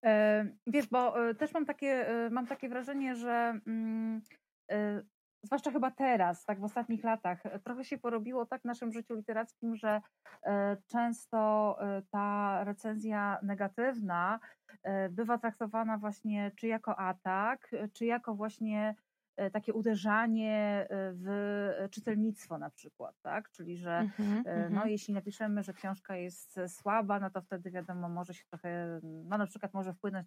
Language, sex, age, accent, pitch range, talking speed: Polish, female, 30-49, native, 190-225 Hz, 130 wpm